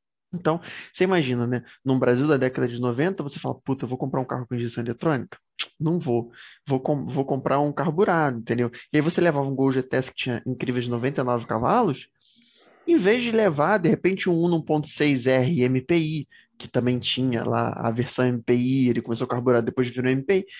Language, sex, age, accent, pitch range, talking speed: Portuguese, male, 20-39, Brazilian, 125-165 Hz, 190 wpm